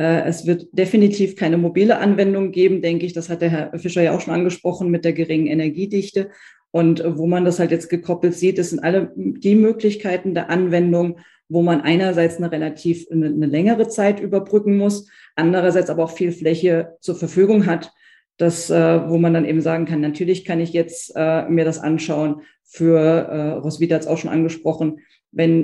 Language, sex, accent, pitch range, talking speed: German, female, German, 155-175 Hz, 180 wpm